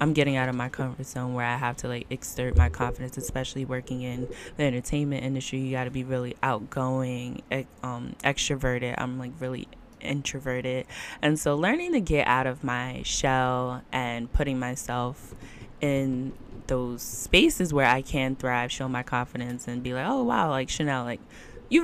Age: 10-29